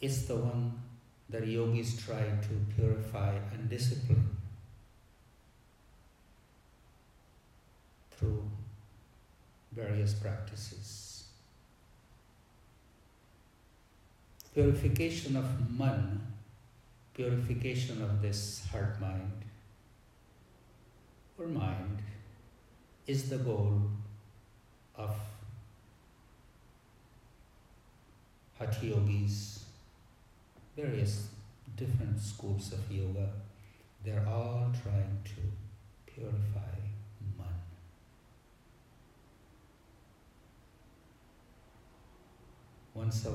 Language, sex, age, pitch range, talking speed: English, male, 60-79, 100-115 Hz, 55 wpm